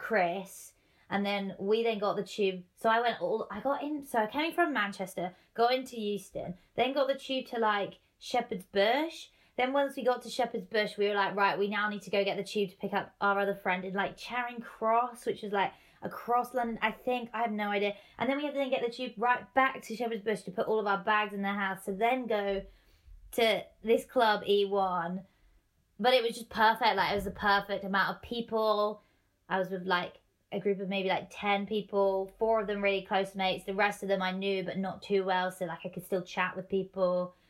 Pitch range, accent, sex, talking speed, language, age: 190-225 Hz, British, female, 240 wpm, English, 20-39